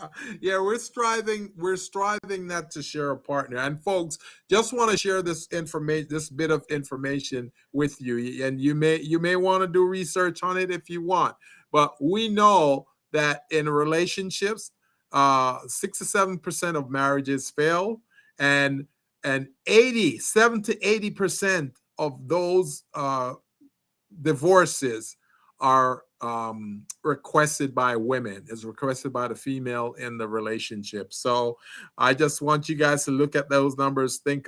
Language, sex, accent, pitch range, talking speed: English, male, American, 130-180 Hz, 150 wpm